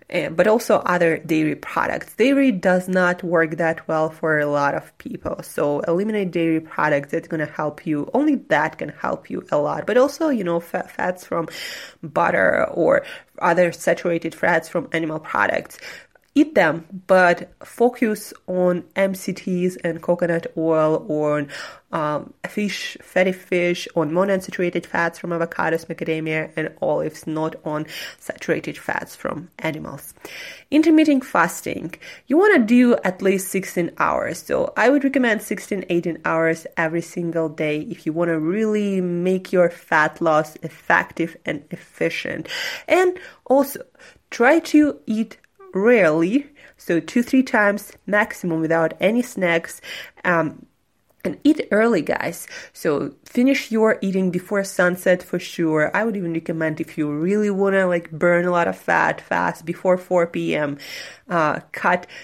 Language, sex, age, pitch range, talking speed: English, female, 20-39, 160-200 Hz, 150 wpm